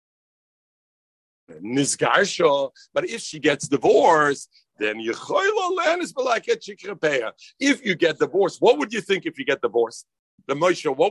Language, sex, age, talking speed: English, male, 50-69, 110 wpm